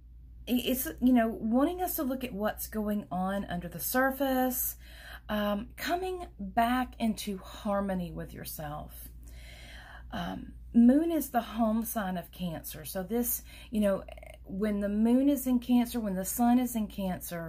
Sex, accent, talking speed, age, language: female, American, 155 wpm, 40-59, English